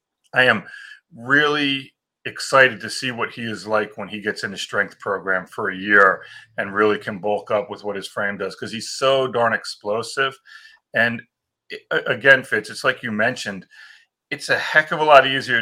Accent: American